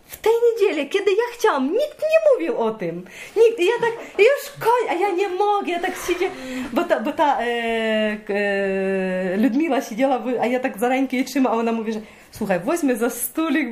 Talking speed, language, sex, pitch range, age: 200 wpm, Polish, female, 215-305 Hz, 30-49